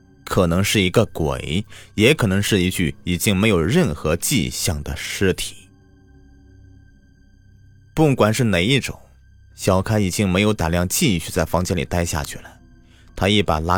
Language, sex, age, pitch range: Chinese, male, 30-49, 90-110 Hz